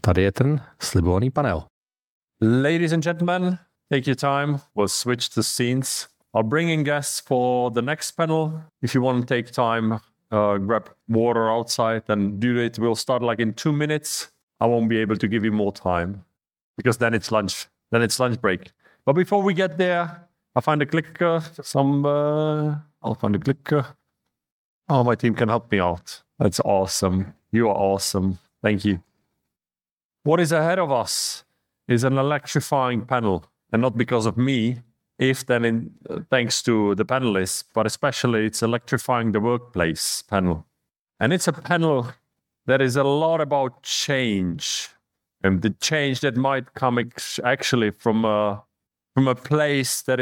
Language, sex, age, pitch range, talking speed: English, male, 40-59, 110-140 Hz, 165 wpm